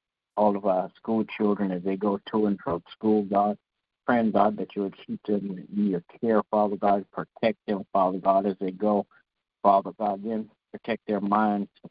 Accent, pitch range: American, 100-105 Hz